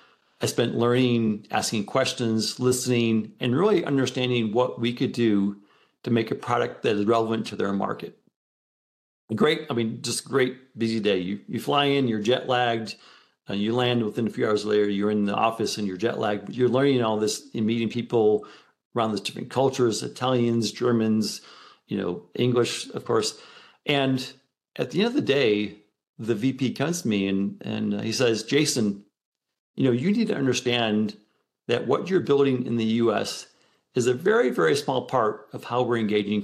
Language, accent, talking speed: English, American, 185 wpm